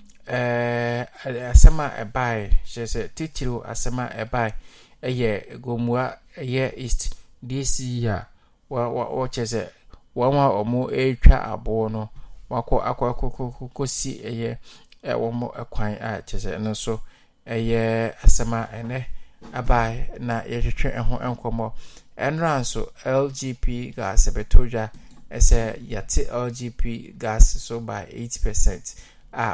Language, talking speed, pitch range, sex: English, 120 wpm, 110-125 Hz, male